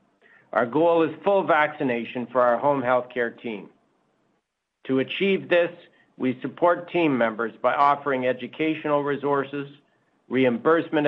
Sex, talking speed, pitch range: male, 125 wpm, 125-155 Hz